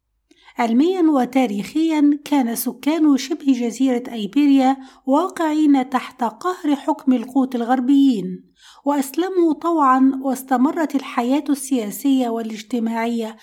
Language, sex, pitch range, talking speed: English, female, 240-295 Hz, 85 wpm